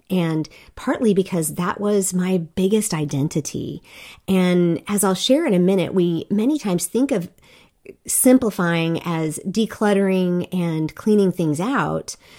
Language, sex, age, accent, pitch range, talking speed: English, female, 40-59, American, 170-210 Hz, 130 wpm